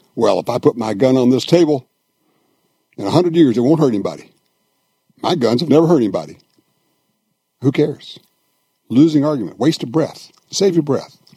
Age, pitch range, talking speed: 60-79, 130-170 Hz, 175 wpm